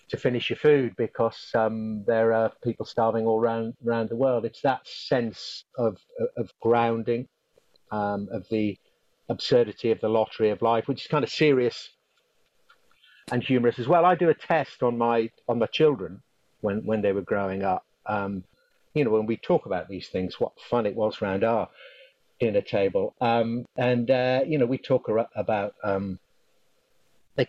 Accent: British